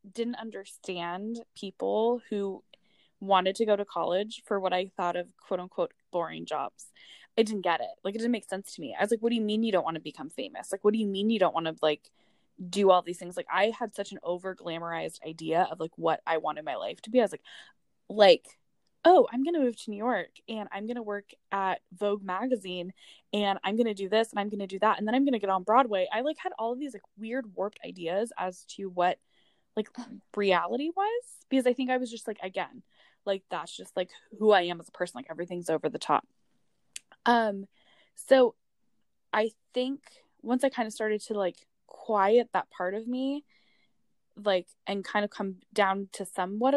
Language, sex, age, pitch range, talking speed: English, female, 10-29, 190-235 Hz, 220 wpm